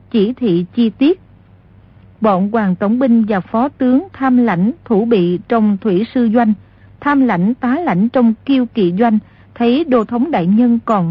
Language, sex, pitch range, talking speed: Vietnamese, female, 200-260 Hz, 180 wpm